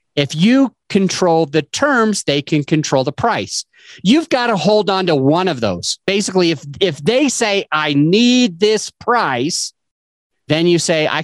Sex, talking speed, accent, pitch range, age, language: male, 170 wpm, American, 130-190 Hz, 30-49, English